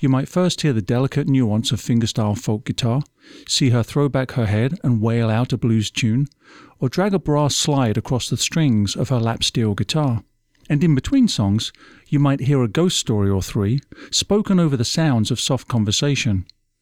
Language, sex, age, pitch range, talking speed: English, male, 50-69, 115-145 Hz, 195 wpm